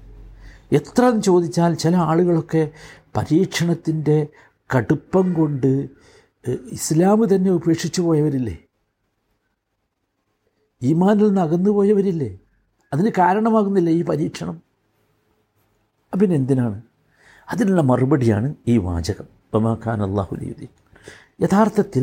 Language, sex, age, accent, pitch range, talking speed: Malayalam, male, 60-79, native, 120-175 Hz, 80 wpm